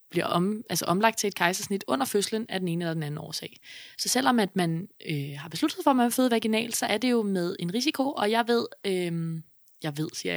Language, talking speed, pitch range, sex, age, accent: Danish, 245 wpm, 170-220 Hz, female, 20-39, native